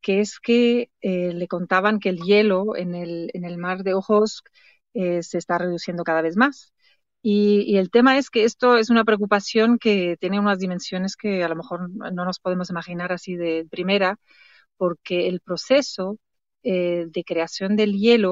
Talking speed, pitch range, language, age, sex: 185 wpm, 185-235 Hz, Spanish, 40-59, female